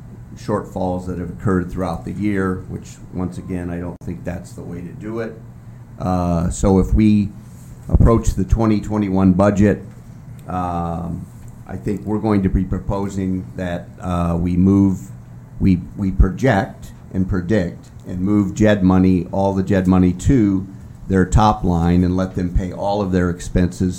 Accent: American